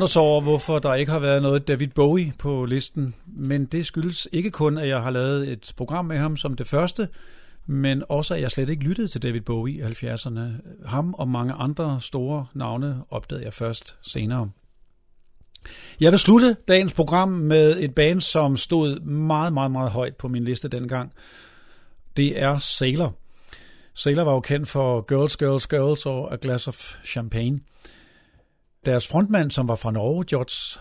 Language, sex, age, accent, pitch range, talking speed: Danish, male, 50-69, native, 125-160 Hz, 175 wpm